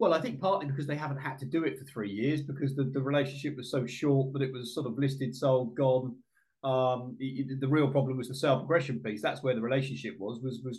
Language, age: English, 30-49